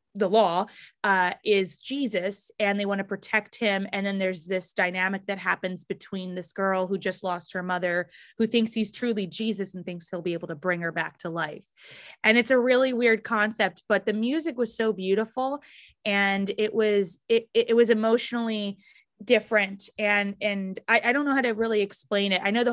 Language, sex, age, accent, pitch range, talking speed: English, female, 20-39, American, 180-215 Hz, 200 wpm